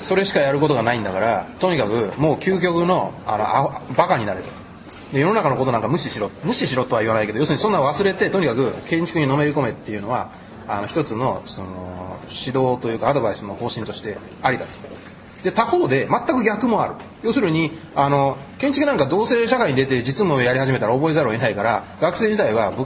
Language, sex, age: Japanese, male, 20-39